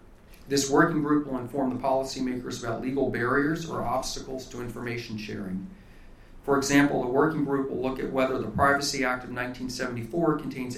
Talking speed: 165 wpm